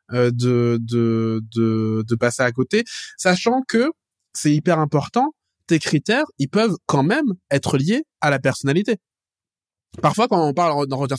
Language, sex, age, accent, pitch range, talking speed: English, male, 20-39, French, 125-175 Hz, 150 wpm